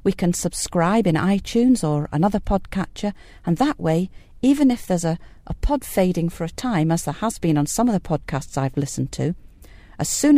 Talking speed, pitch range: 200 wpm, 155-205 Hz